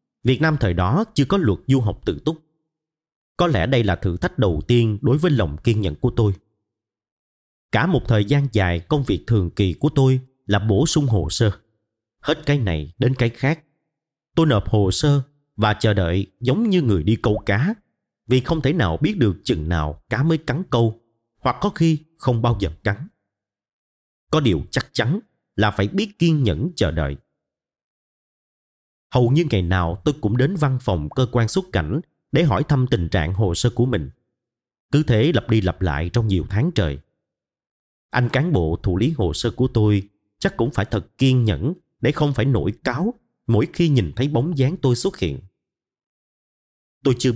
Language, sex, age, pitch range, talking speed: Vietnamese, male, 30-49, 100-145 Hz, 195 wpm